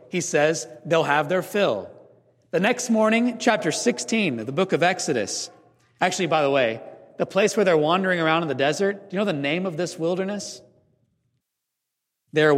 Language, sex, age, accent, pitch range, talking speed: English, male, 40-59, American, 155-220 Hz, 180 wpm